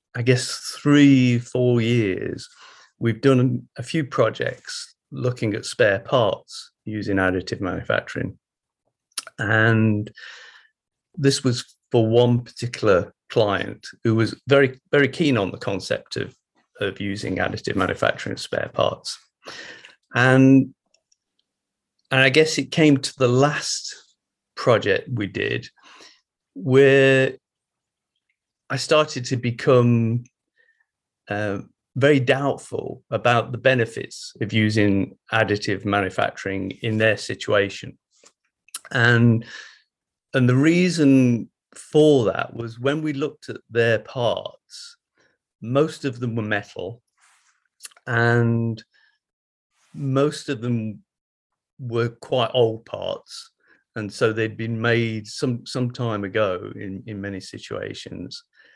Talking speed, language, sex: 110 wpm, English, male